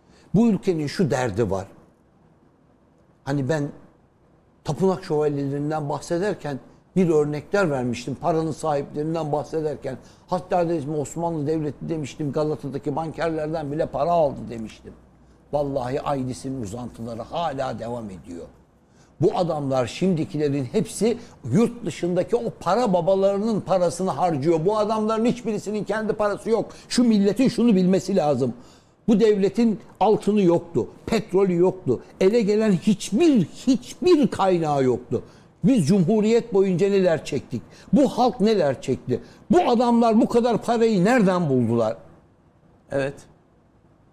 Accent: native